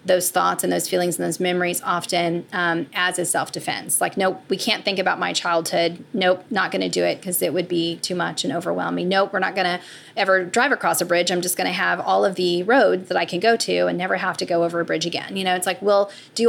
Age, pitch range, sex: 30-49, 170-195 Hz, female